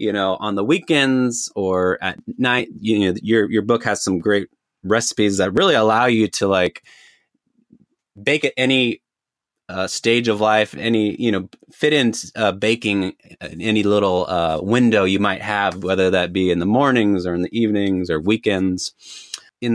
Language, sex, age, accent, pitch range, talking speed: English, male, 20-39, American, 95-120 Hz, 180 wpm